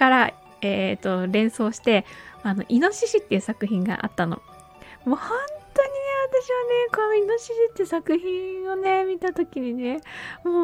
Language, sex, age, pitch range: Japanese, female, 20-39, 200-320 Hz